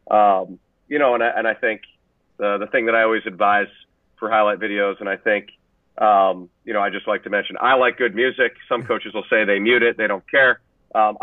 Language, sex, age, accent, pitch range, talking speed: English, male, 40-59, American, 105-120 Hz, 235 wpm